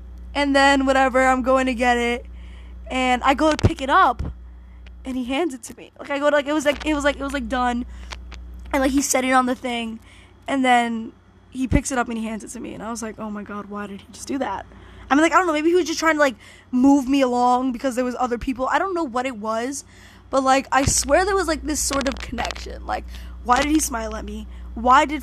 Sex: female